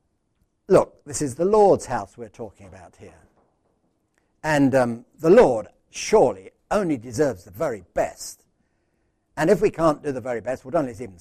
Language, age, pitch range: English, 60-79, 110-145 Hz